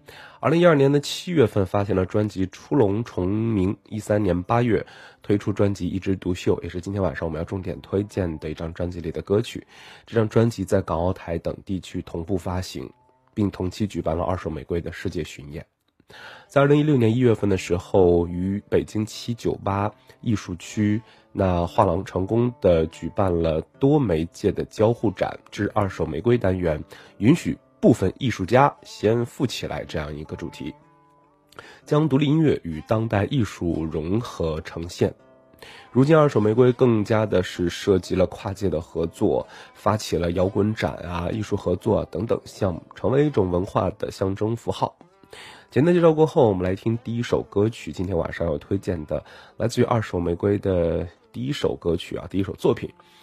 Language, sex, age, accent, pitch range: Chinese, male, 20-39, native, 85-115 Hz